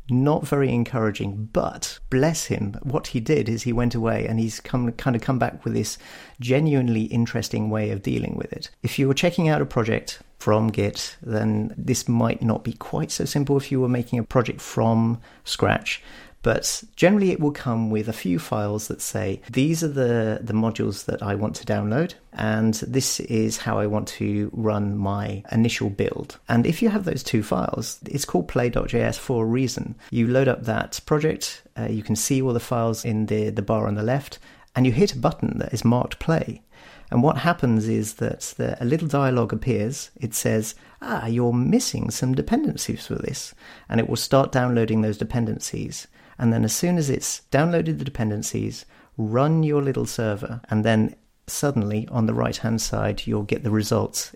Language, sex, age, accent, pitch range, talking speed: English, male, 40-59, British, 110-135 Hz, 195 wpm